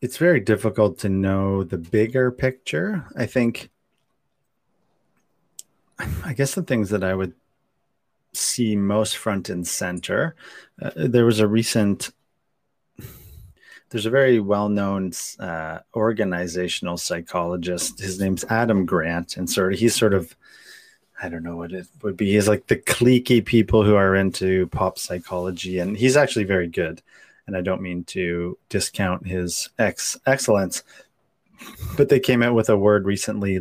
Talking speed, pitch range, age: 150 wpm, 90-115 Hz, 30-49